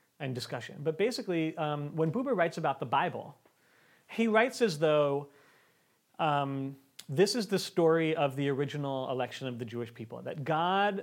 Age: 40-59